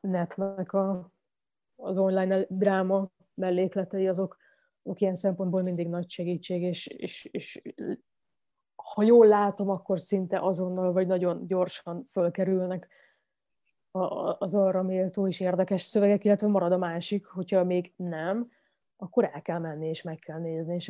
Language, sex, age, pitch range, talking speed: Hungarian, female, 20-39, 175-195 Hz, 130 wpm